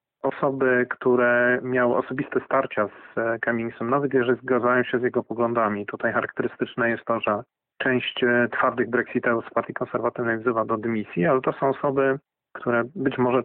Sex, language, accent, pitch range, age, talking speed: male, Polish, native, 115-130 Hz, 40-59, 155 wpm